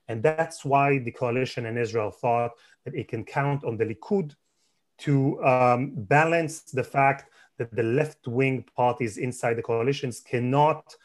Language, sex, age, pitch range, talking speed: English, male, 30-49, 115-135 Hz, 150 wpm